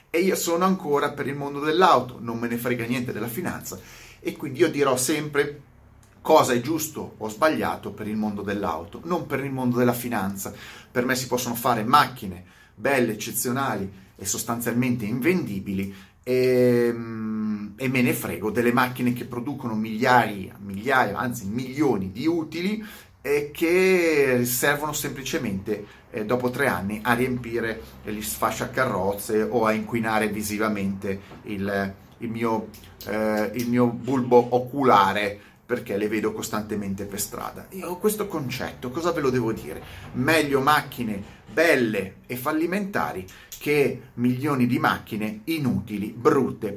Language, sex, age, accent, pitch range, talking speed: Italian, male, 30-49, native, 105-130 Hz, 145 wpm